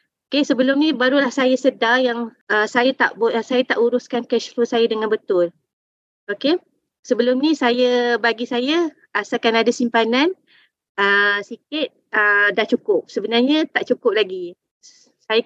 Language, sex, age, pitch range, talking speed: Malay, female, 20-39, 225-265 Hz, 150 wpm